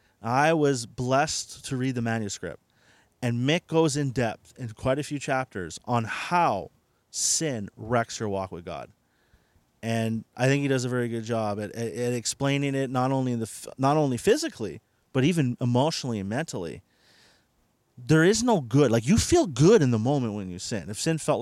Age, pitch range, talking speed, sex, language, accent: 30-49, 110-150 Hz, 180 wpm, male, English, American